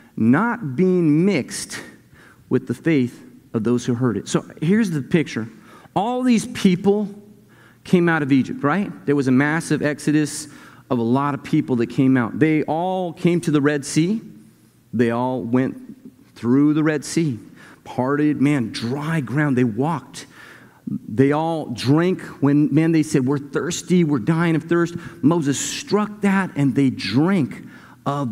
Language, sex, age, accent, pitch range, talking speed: English, male, 40-59, American, 130-175 Hz, 160 wpm